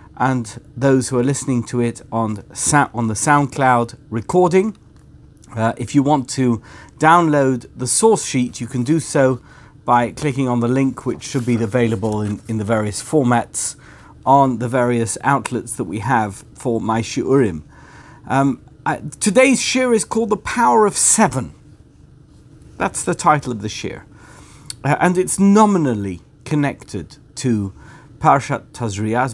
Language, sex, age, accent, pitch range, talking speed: English, male, 50-69, British, 120-150 Hz, 150 wpm